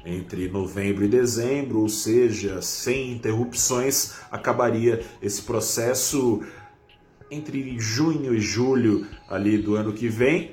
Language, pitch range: Portuguese, 100-120 Hz